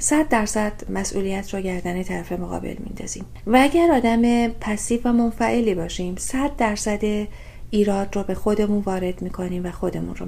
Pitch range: 180-230 Hz